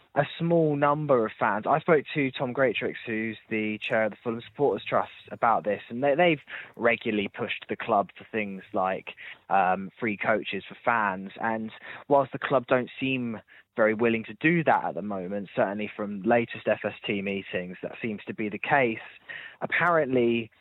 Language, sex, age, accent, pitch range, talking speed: English, male, 20-39, British, 105-130 Hz, 175 wpm